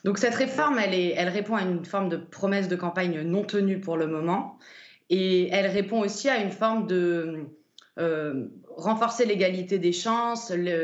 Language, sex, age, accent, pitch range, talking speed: French, female, 20-39, French, 165-205 Hz, 185 wpm